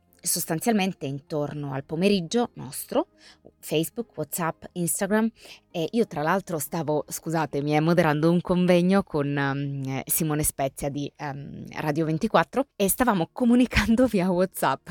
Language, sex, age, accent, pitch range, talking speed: Italian, female, 20-39, native, 145-185 Hz, 120 wpm